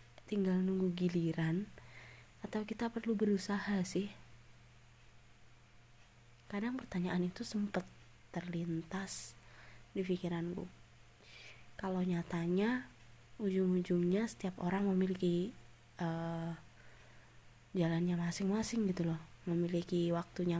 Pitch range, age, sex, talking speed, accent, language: 160-195 Hz, 20-39, female, 80 wpm, native, Indonesian